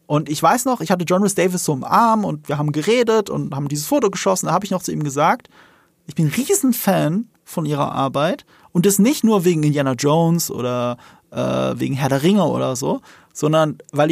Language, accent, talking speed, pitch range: German, German, 215 wpm, 160-210 Hz